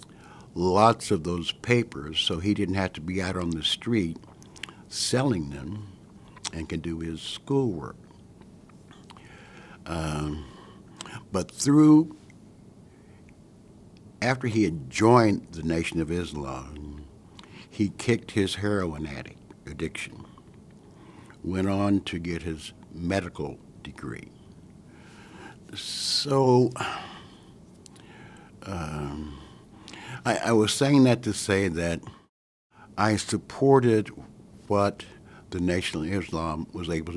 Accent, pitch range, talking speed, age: American, 80-105 Hz, 100 wpm, 60-79